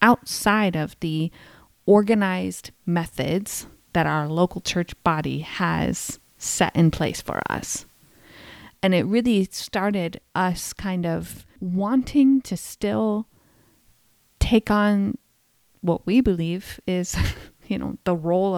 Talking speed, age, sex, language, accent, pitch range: 115 wpm, 20-39, female, English, American, 165-210 Hz